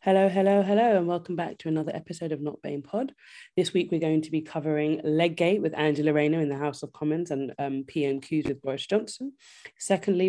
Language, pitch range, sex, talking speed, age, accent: English, 150-190 Hz, female, 210 wpm, 20-39, British